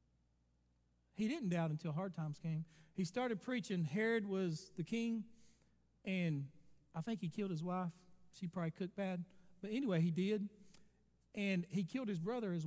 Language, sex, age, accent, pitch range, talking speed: English, male, 40-59, American, 155-215 Hz, 165 wpm